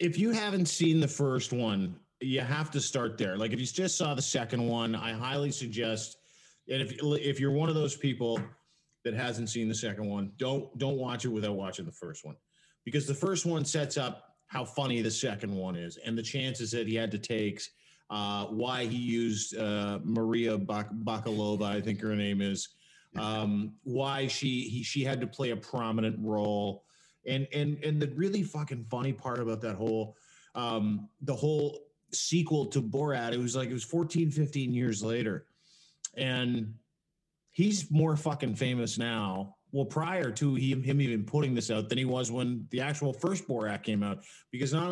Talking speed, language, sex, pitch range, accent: 190 wpm, English, male, 110-140 Hz, American